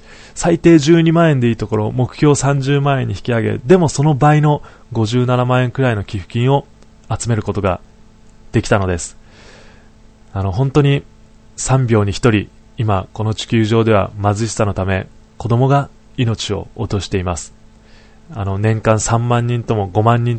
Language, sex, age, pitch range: Japanese, male, 20-39, 105-125 Hz